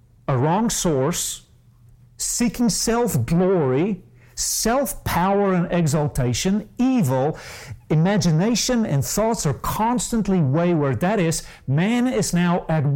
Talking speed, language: 95 wpm, English